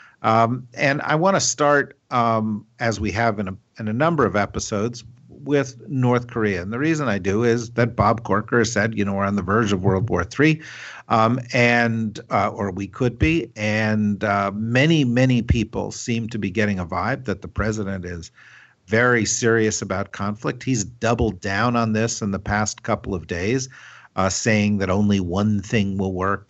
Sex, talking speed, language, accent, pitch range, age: male, 180 wpm, English, American, 100-120 Hz, 50-69